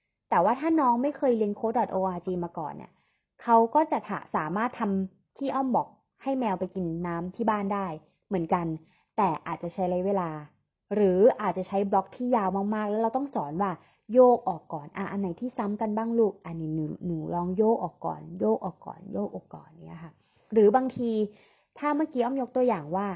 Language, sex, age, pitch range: English, female, 20-39, 175-230 Hz